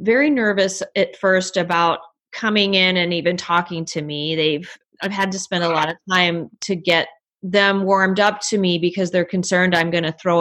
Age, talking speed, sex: 30-49, 200 wpm, female